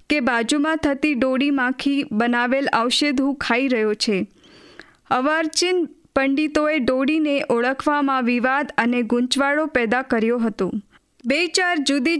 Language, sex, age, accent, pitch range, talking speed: Hindi, female, 20-39, native, 255-305 Hz, 95 wpm